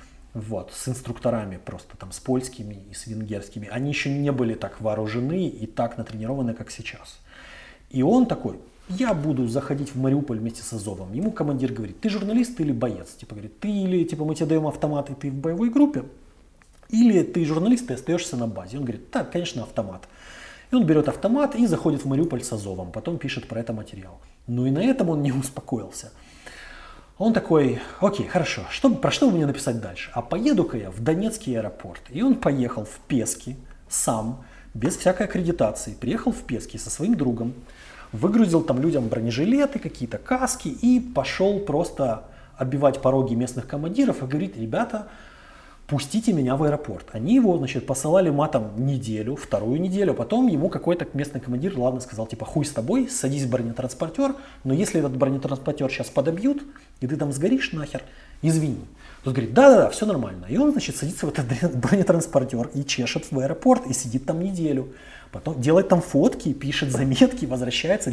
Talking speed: 175 wpm